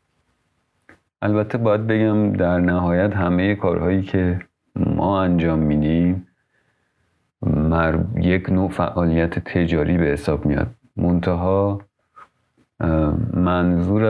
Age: 40-59